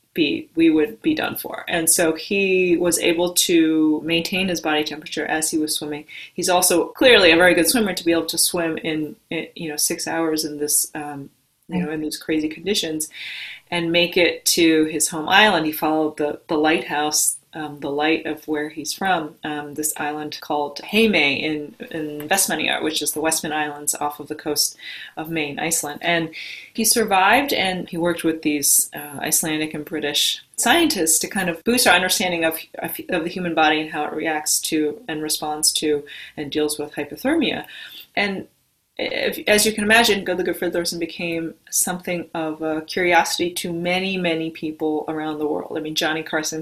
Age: 30-49